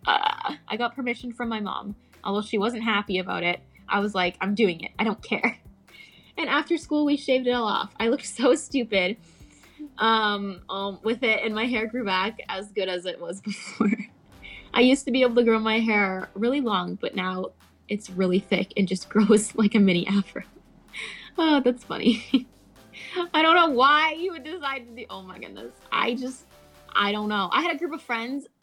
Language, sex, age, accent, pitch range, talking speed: English, female, 20-39, American, 195-245 Hz, 205 wpm